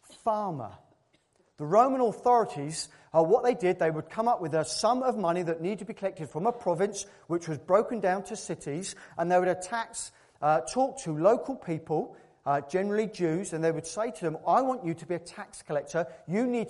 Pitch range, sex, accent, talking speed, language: 155-205 Hz, male, British, 210 wpm, English